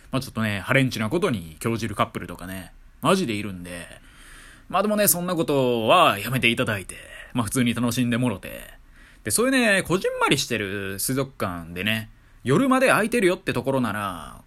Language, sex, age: Japanese, male, 20-39